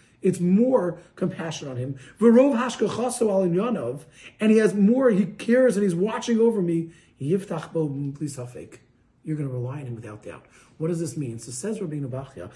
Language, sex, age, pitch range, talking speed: English, male, 40-59, 180-240 Hz, 150 wpm